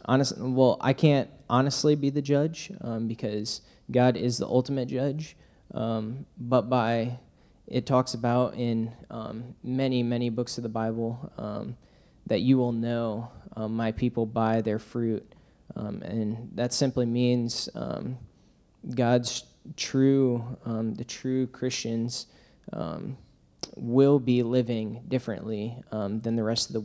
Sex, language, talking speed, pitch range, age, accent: male, English, 140 wpm, 115-125 Hz, 20-39, American